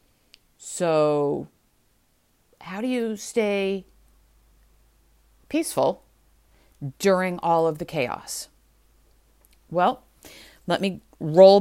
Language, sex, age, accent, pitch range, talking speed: English, female, 40-59, American, 140-190 Hz, 80 wpm